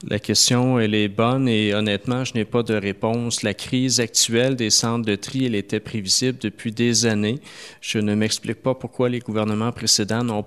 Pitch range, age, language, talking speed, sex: 105-120 Hz, 40-59, French, 195 wpm, male